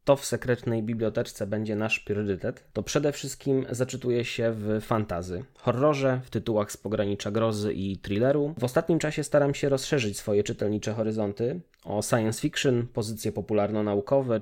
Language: Polish